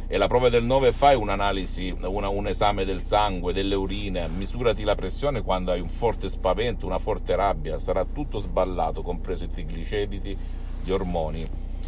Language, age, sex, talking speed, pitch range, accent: Italian, 50-69, male, 160 wpm, 90-105 Hz, native